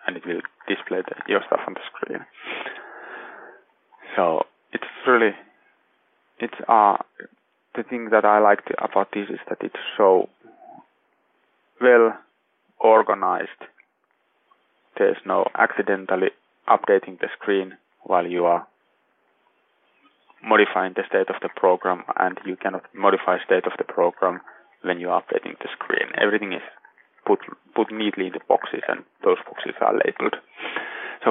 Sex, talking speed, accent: male, 130 wpm, Finnish